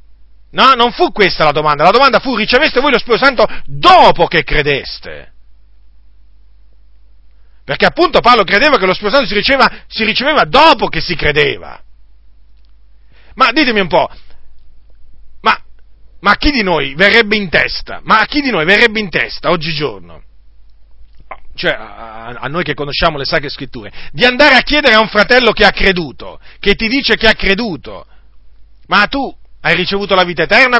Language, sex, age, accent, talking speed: Italian, male, 40-59, native, 165 wpm